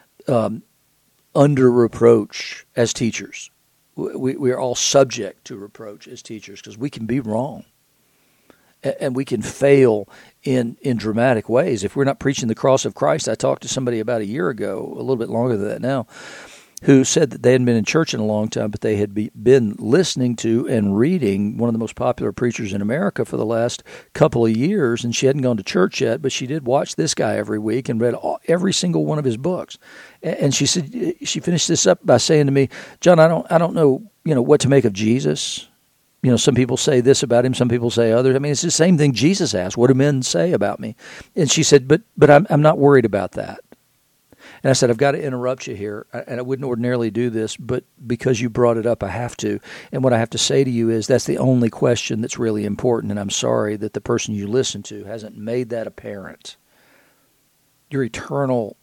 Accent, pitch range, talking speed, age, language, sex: American, 115-135 Hz, 230 wpm, 50-69, English, male